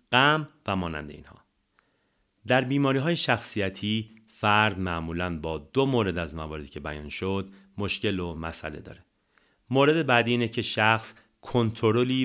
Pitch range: 85-115 Hz